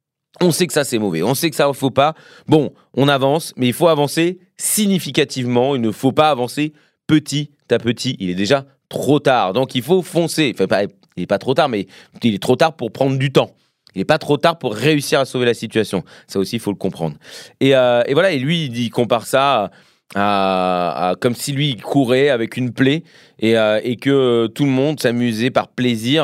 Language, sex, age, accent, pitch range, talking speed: French, male, 30-49, French, 115-145 Hz, 225 wpm